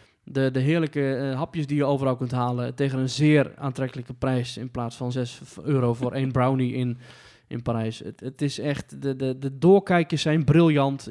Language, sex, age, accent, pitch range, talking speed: Dutch, male, 20-39, Dutch, 130-155 Hz, 195 wpm